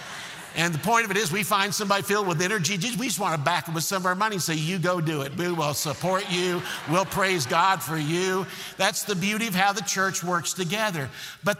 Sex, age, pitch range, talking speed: male, 50-69, 155-200 Hz, 250 wpm